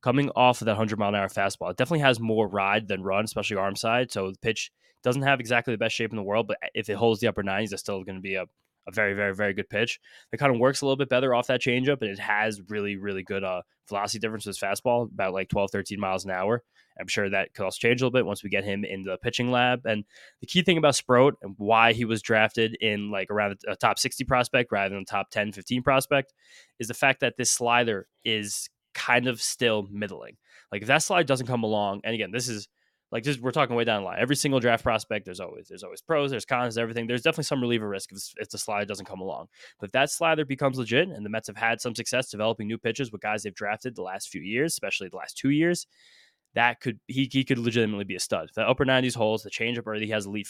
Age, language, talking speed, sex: 20-39, English, 260 wpm, male